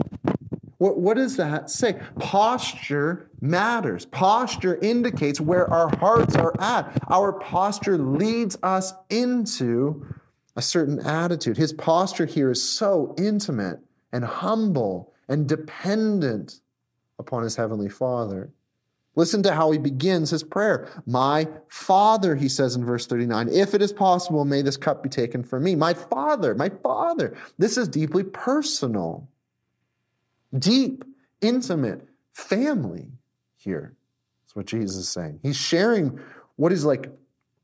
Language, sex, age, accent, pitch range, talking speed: English, male, 30-49, American, 130-200 Hz, 130 wpm